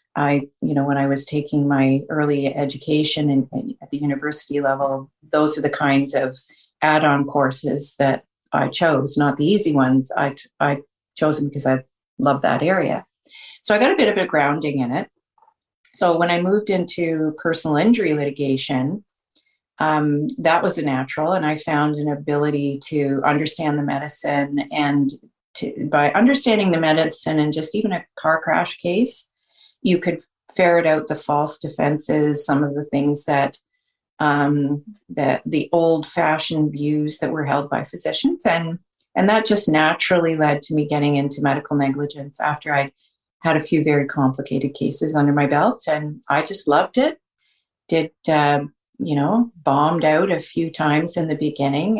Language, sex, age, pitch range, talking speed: English, female, 40-59, 145-165 Hz, 170 wpm